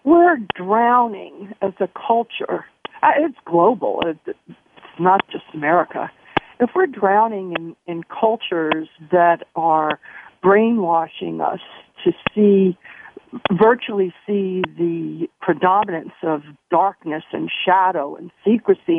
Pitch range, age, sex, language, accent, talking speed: 185-245 Hz, 60-79, female, English, American, 105 wpm